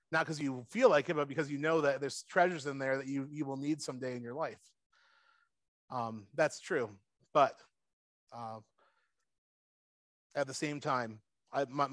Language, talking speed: English, 170 wpm